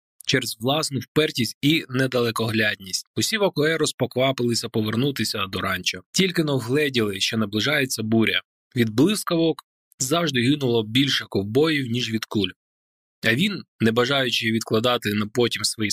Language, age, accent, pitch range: Ukrainian, 20-39, native, 110-145 Hz